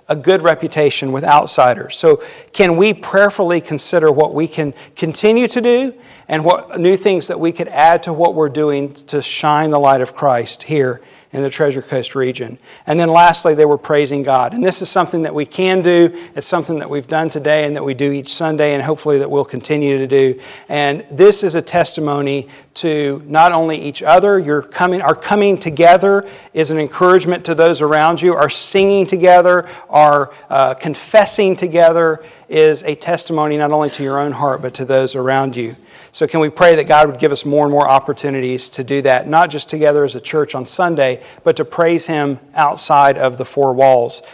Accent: American